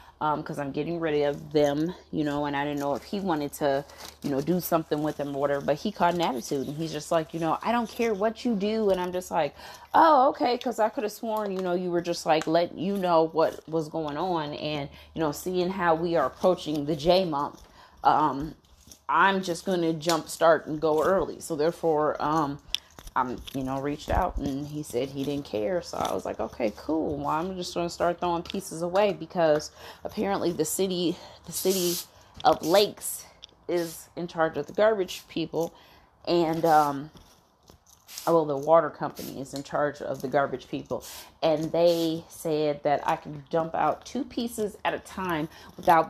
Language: English